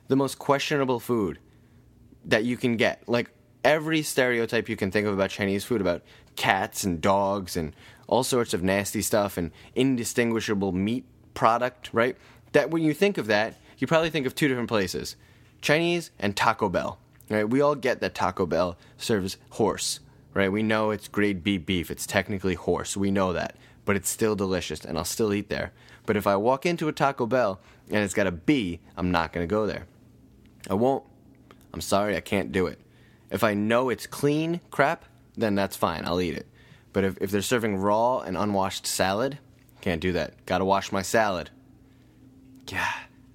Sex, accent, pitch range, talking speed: male, American, 95-125 Hz, 190 wpm